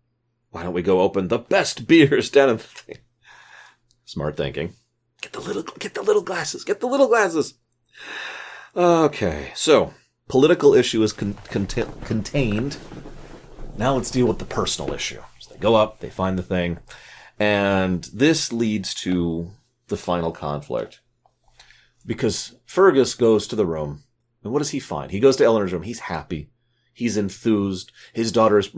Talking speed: 155 wpm